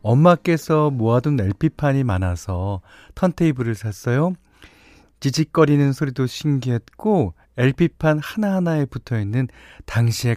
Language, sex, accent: Korean, male, native